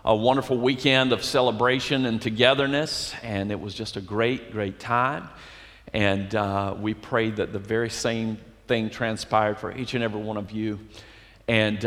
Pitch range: 110-145 Hz